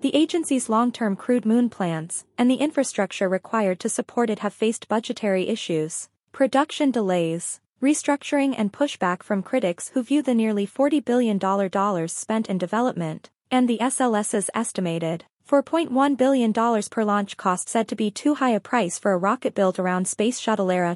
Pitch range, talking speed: 195-250 Hz, 160 wpm